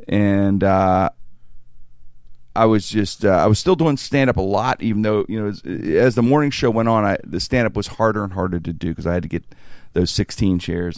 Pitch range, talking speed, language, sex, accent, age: 85-115 Hz, 230 wpm, English, male, American, 40-59